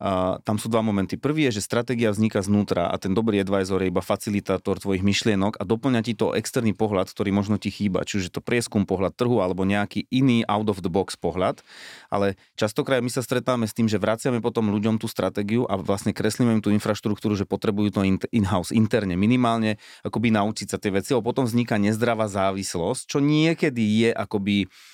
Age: 30-49